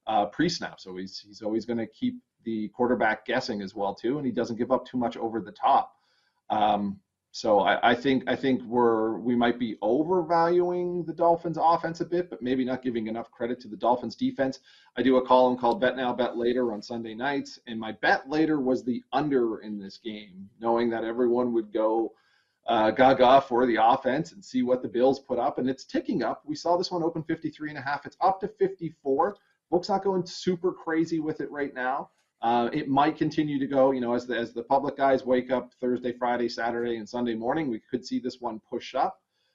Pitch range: 115-145 Hz